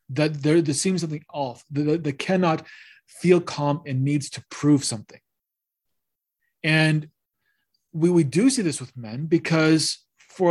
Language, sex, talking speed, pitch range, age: English, male, 150 wpm, 140-170 Hz, 30-49